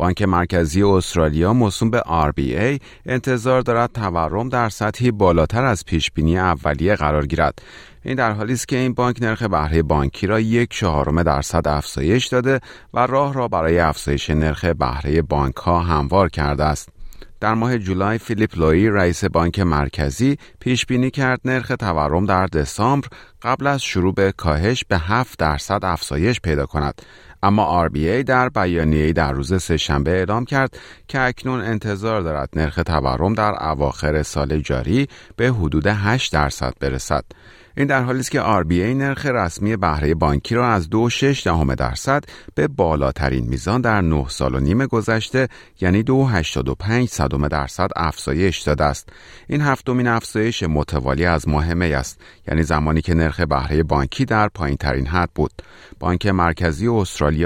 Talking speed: 155 wpm